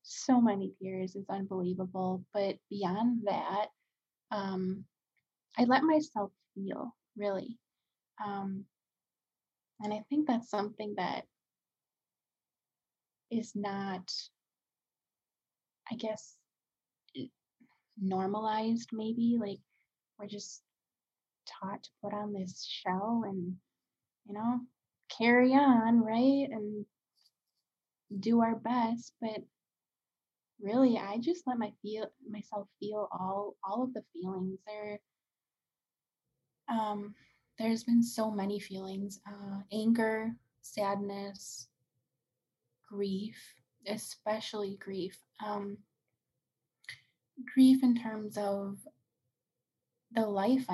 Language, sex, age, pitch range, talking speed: English, female, 20-39, 195-225 Hz, 95 wpm